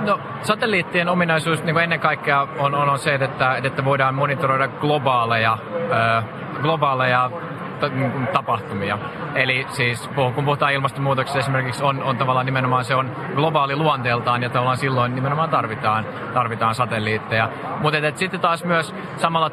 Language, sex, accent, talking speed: Finnish, male, native, 130 wpm